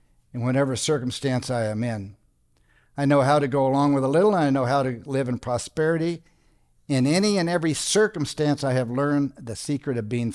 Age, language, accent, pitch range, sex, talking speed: 60-79, English, American, 95-140 Hz, male, 205 wpm